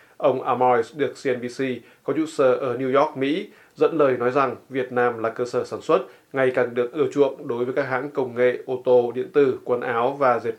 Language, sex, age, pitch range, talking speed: Vietnamese, male, 20-39, 120-135 Hz, 230 wpm